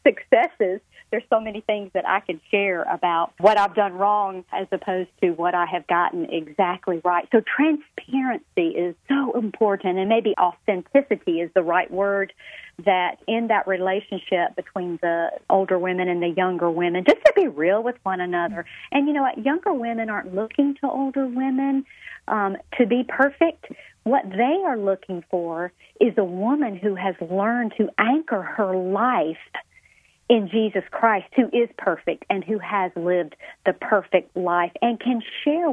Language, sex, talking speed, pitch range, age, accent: English, female, 170 wpm, 185-255 Hz, 40-59, American